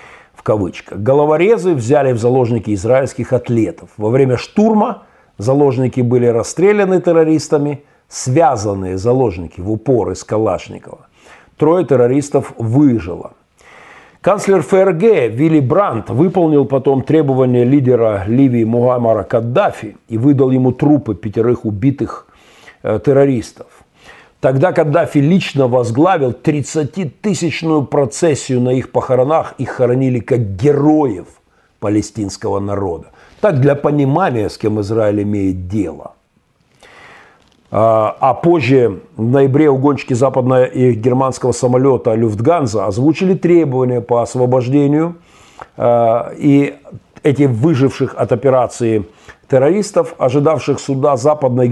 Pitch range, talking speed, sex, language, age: 120-150 Hz, 100 wpm, male, Russian, 50-69